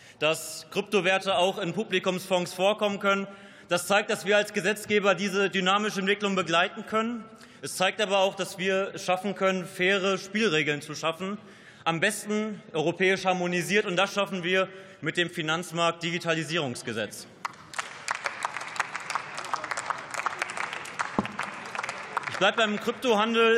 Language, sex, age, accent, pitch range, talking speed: German, male, 30-49, German, 170-200 Hz, 115 wpm